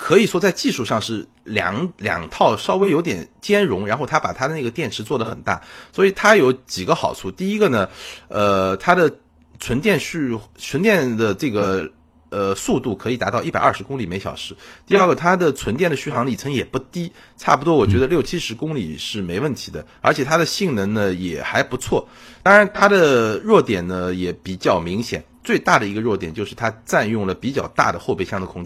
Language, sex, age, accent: Chinese, male, 30-49, native